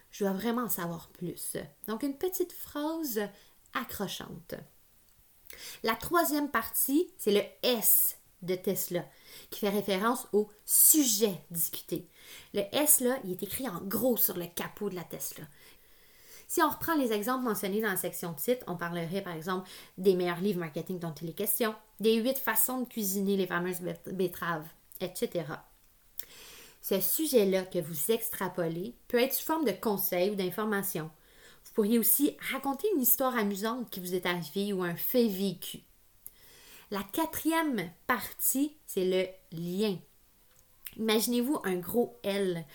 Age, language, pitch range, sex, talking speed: 30-49, French, 185-245 Hz, female, 150 wpm